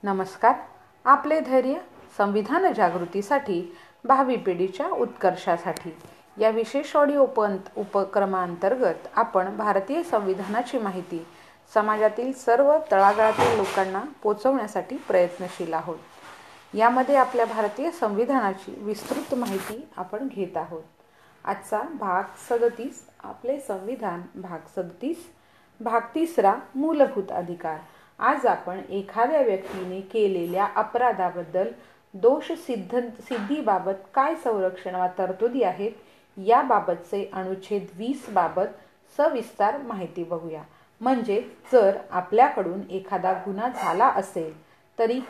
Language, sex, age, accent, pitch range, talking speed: Hindi, female, 40-59, native, 185-245 Hz, 80 wpm